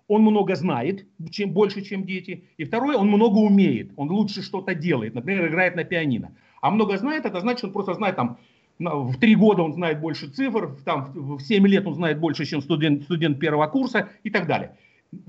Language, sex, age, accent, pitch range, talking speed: Russian, male, 50-69, native, 165-215 Hz, 205 wpm